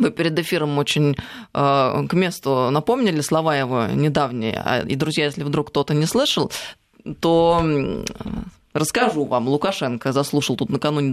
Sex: female